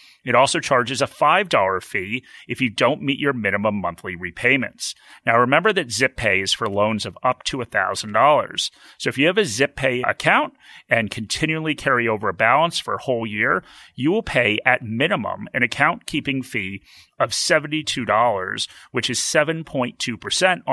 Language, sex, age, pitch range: English, male, 30-49, 110-150 Hz